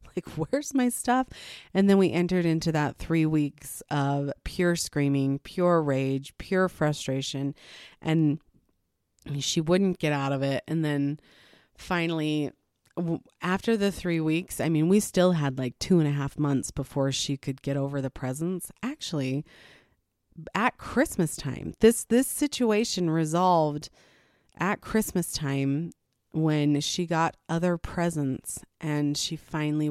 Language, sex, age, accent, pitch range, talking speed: English, female, 30-49, American, 145-185 Hz, 140 wpm